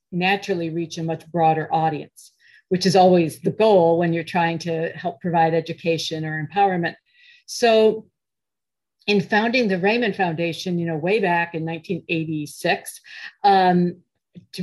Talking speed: 140 wpm